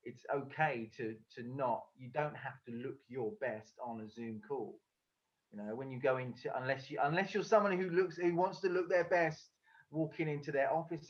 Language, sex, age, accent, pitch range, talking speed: English, male, 30-49, British, 115-160 Hz, 210 wpm